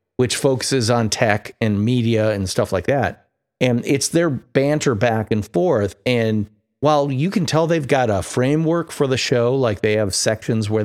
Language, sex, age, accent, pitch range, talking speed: English, male, 40-59, American, 110-140 Hz, 190 wpm